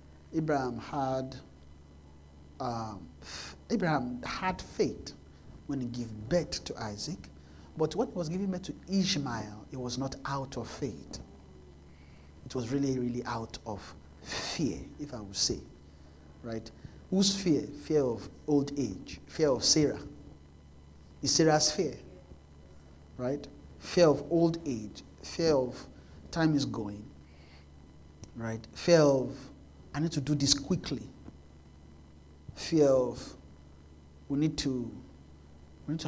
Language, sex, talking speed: English, male, 130 wpm